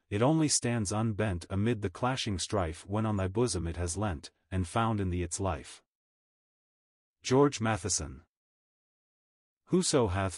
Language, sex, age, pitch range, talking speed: English, male, 40-59, 95-120 Hz, 145 wpm